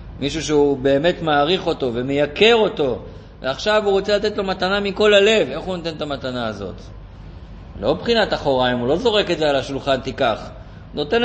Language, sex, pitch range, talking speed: Hebrew, male, 140-215 Hz, 175 wpm